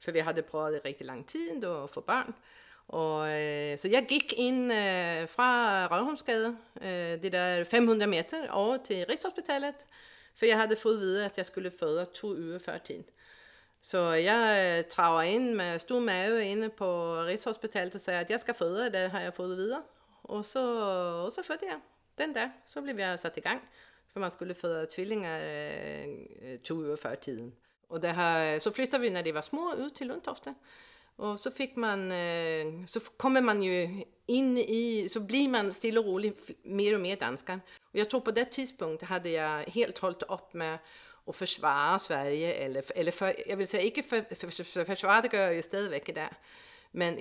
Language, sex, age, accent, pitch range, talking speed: Danish, female, 40-59, Swedish, 170-235 Hz, 195 wpm